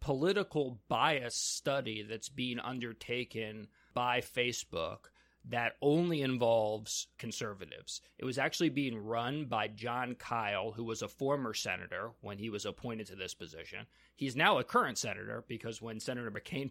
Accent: American